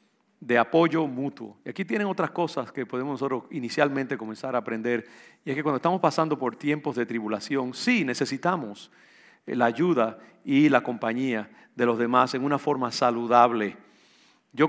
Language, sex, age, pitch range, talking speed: English, male, 50-69, 120-155 Hz, 165 wpm